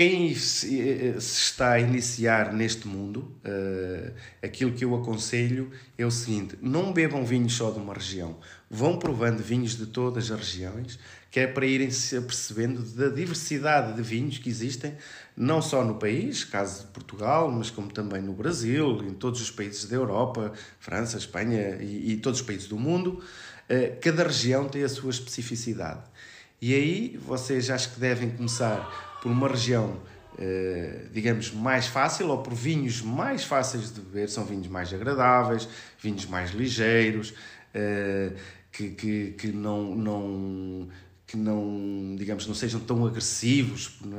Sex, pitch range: male, 105-130 Hz